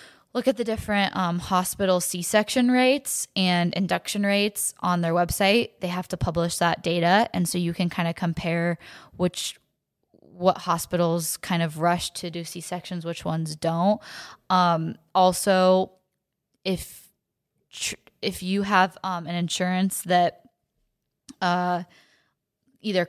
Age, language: 10-29, English